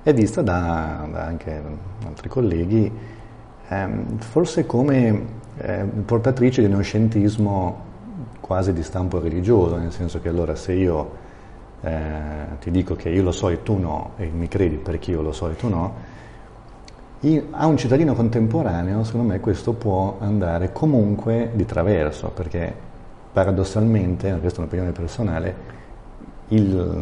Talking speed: 140 wpm